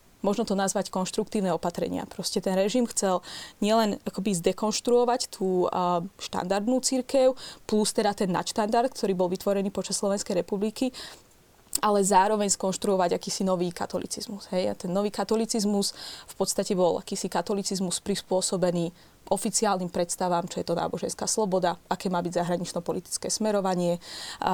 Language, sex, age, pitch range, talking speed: Slovak, female, 20-39, 180-205 Hz, 130 wpm